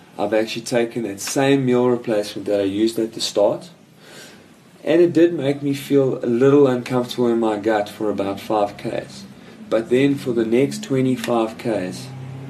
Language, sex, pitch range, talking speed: English, male, 105-125 Hz, 165 wpm